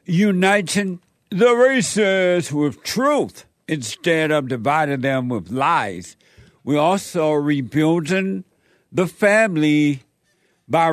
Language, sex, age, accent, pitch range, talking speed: English, male, 60-79, American, 140-180 Hz, 95 wpm